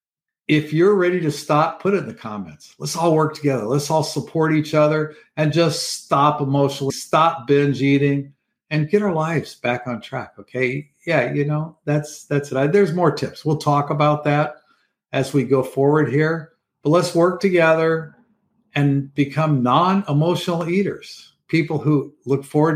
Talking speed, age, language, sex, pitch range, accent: 170 wpm, 50-69, English, male, 135-160 Hz, American